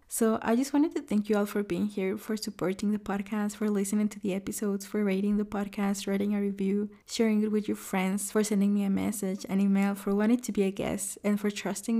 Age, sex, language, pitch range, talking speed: 20-39, female, English, 200-220 Hz, 240 wpm